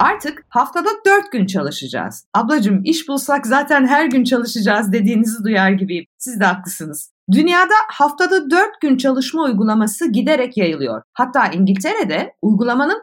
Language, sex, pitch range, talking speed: Turkish, female, 190-300 Hz, 135 wpm